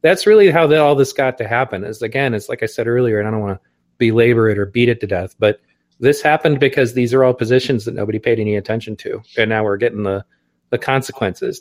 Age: 30-49